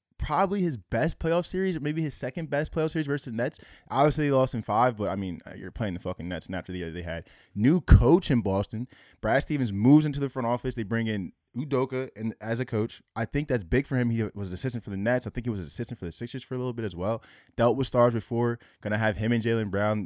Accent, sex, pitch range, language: American, male, 105-140 Hz, English